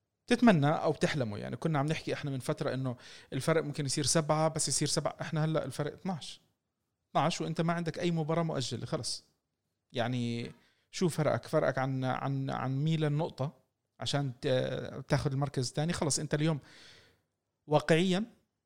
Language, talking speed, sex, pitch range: Arabic, 150 wpm, male, 125-155 Hz